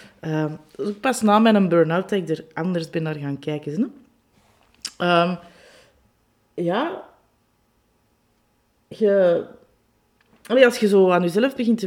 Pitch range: 170-215 Hz